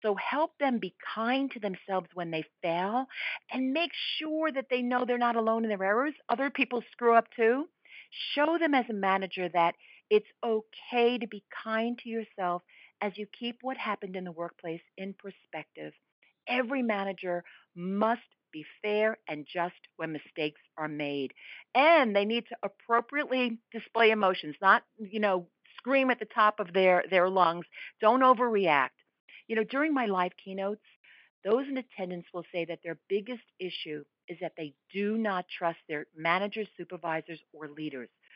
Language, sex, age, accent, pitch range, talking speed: English, female, 50-69, American, 175-240 Hz, 165 wpm